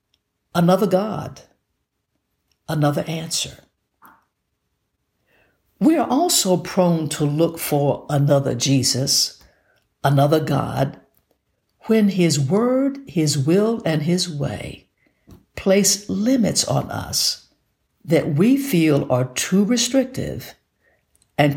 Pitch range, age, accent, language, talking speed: 140-200 Hz, 60-79, American, English, 95 wpm